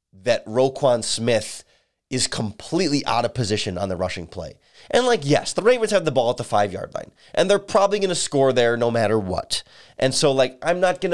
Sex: male